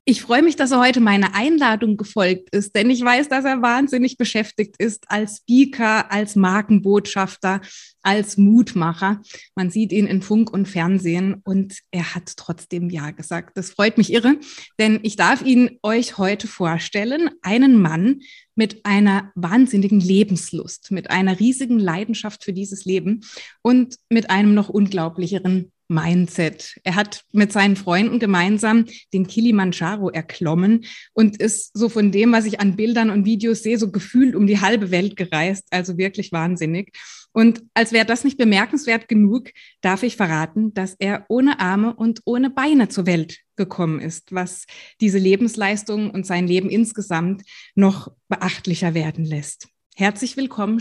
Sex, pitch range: female, 185-225 Hz